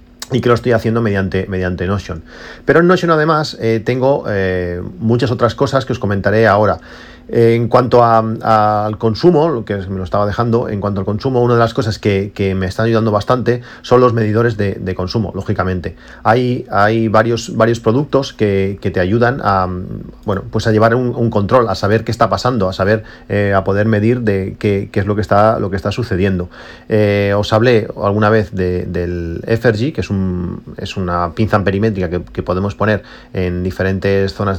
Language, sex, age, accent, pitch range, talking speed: Spanish, male, 40-59, Spanish, 95-115 Hz, 200 wpm